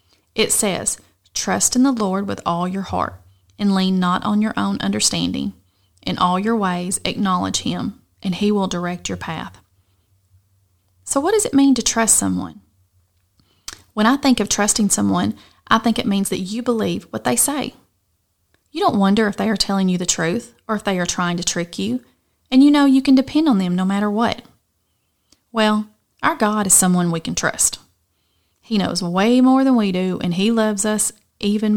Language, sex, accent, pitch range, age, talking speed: English, female, American, 170-220 Hz, 30-49, 195 wpm